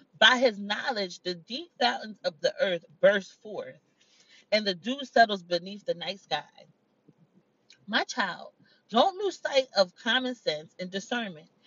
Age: 30-49